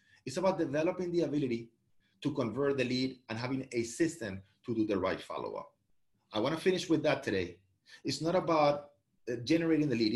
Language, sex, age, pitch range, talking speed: English, male, 30-49, 115-155 Hz, 175 wpm